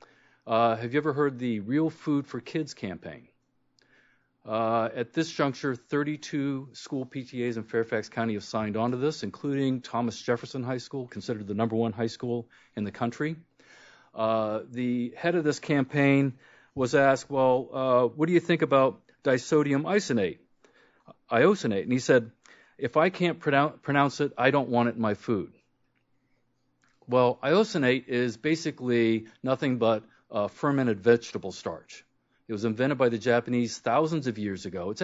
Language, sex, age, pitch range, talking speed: English, male, 40-59, 110-135 Hz, 165 wpm